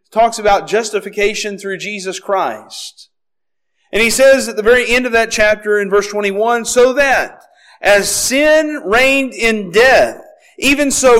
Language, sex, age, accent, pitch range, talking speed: English, male, 40-59, American, 210-255 Hz, 150 wpm